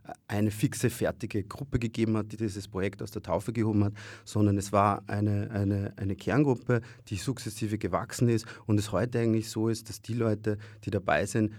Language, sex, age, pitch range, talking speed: German, male, 30-49, 95-110 Hz, 185 wpm